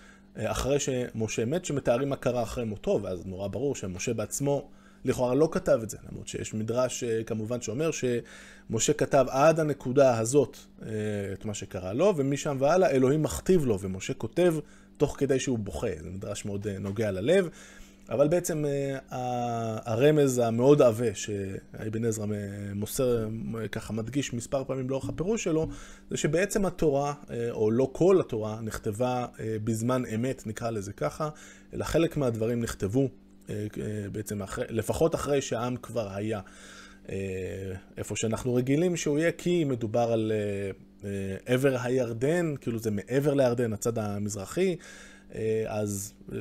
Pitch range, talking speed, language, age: 110-140 Hz, 140 wpm, Hebrew, 20-39